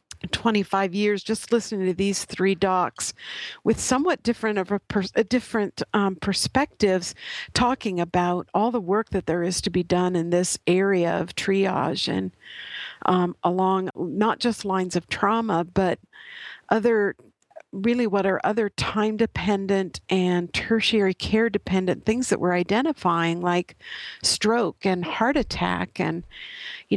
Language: English